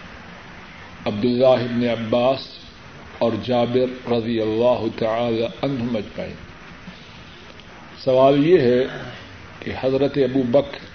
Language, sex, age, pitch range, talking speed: Urdu, male, 50-69, 115-145 Hz, 90 wpm